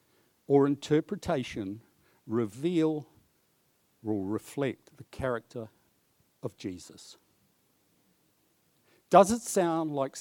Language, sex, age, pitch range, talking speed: English, male, 60-79, 115-175 Hz, 75 wpm